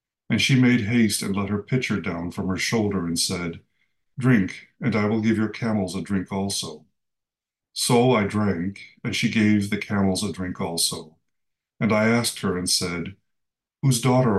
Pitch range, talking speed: 90-115 Hz, 180 wpm